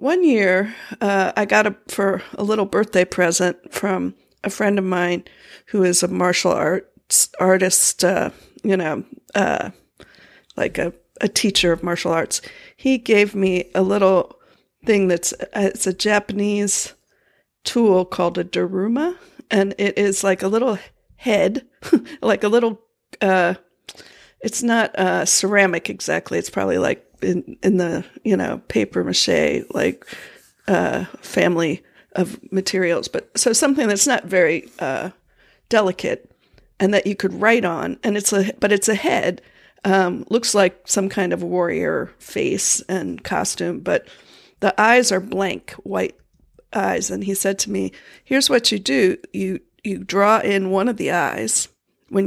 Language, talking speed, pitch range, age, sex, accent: English, 155 wpm, 185-220 Hz, 50-69, female, American